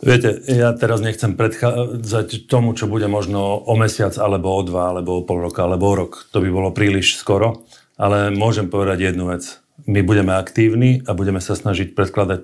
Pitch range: 95-110 Hz